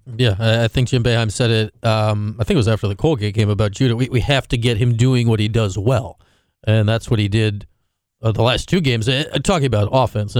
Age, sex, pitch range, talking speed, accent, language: 40-59, male, 110-140 Hz, 250 wpm, American, English